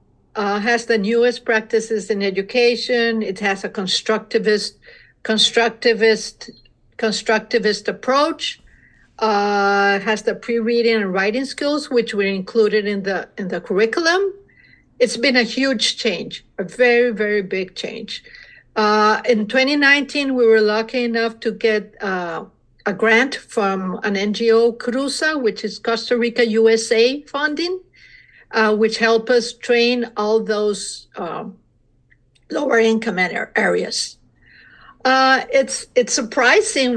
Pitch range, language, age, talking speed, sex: 215-250 Hz, English, 50-69, 125 wpm, female